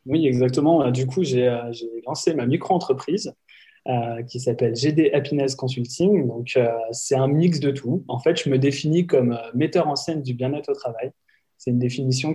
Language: French